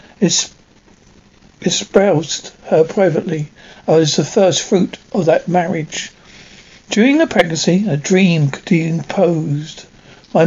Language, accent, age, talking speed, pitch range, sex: English, British, 60-79, 110 wpm, 165-200 Hz, male